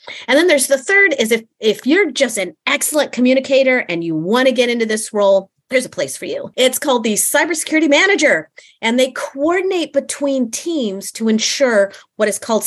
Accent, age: American, 40-59